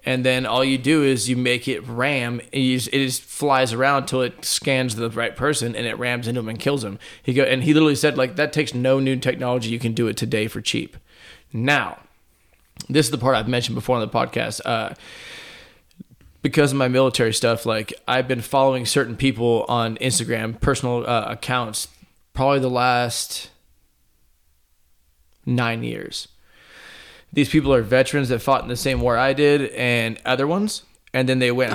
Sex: male